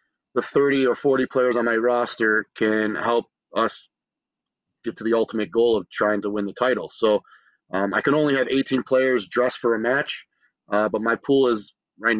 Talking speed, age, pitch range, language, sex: 195 wpm, 30-49, 105-125 Hz, English, male